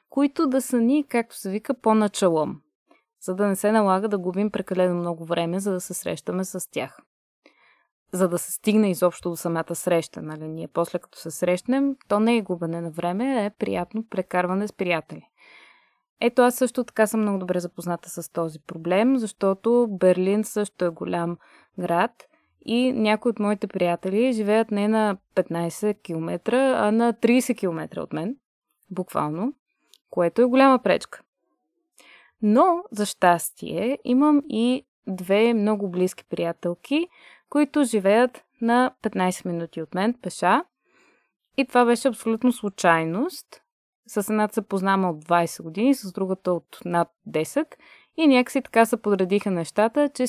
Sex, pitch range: female, 180-240 Hz